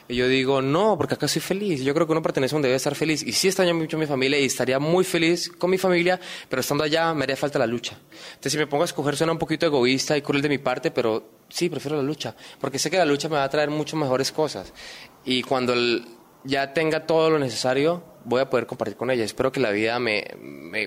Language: Spanish